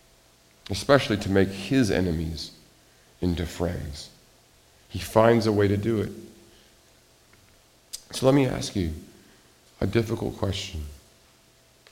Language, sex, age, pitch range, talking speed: English, male, 50-69, 85-110 Hz, 110 wpm